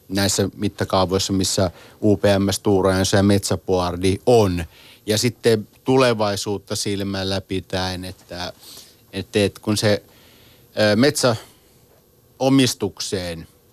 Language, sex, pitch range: Finnish, male, 95-105 Hz